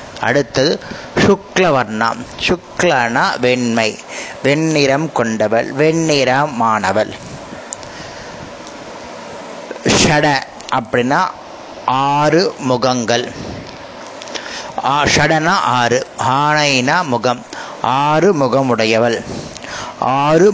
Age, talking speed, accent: 30-49, 55 wpm, native